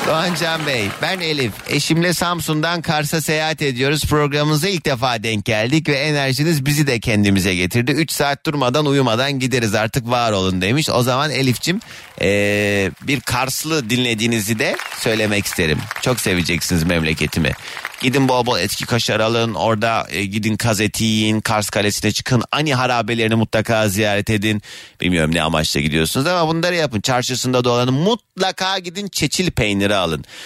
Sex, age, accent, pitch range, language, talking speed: male, 30-49, native, 100-150 Hz, Turkish, 145 wpm